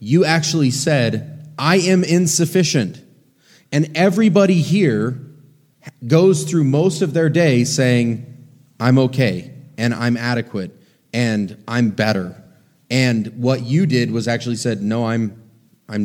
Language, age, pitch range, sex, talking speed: English, 30-49, 115-155 Hz, male, 125 wpm